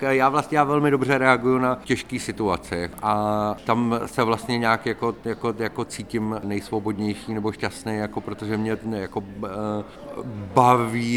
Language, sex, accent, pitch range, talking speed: Czech, male, native, 100-110 Hz, 140 wpm